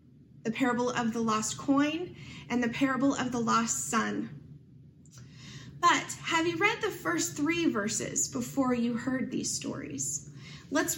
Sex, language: female, English